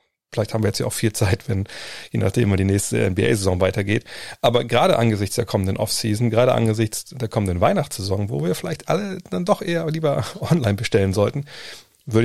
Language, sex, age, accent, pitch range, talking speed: German, male, 40-59, German, 100-120 Hz, 190 wpm